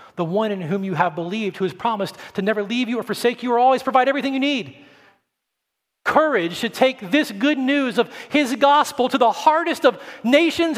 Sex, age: male, 40-59